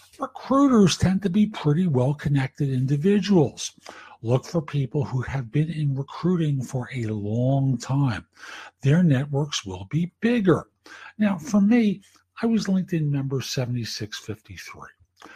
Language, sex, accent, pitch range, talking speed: English, male, American, 120-160 Hz, 130 wpm